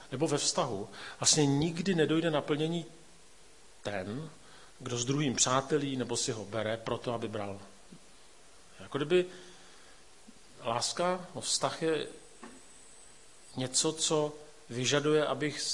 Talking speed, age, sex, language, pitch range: 110 wpm, 40-59, male, Czech, 110-150 Hz